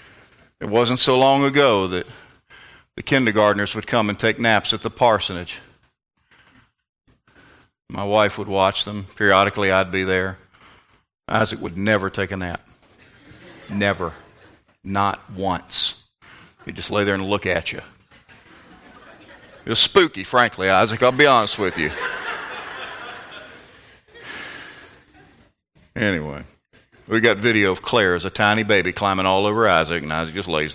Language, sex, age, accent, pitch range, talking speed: English, male, 40-59, American, 95-120 Hz, 140 wpm